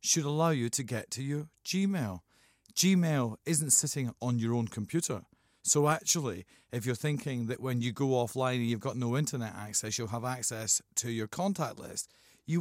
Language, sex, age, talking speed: English, male, 40-59, 185 wpm